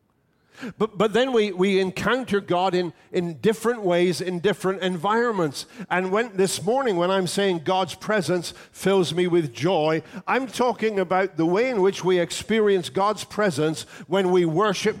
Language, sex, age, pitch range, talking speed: English, male, 50-69, 180-220 Hz, 165 wpm